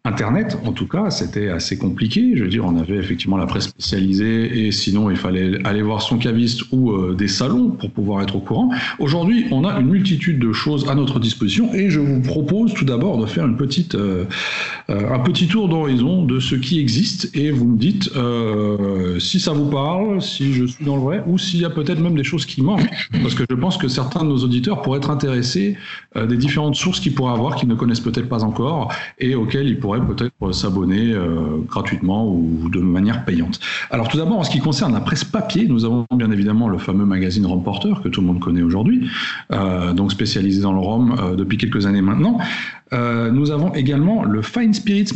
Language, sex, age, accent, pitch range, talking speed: French, male, 40-59, French, 105-150 Hz, 220 wpm